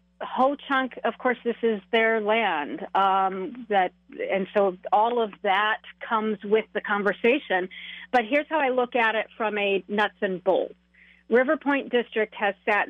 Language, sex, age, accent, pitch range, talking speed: English, female, 40-59, American, 195-235 Hz, 165 wpm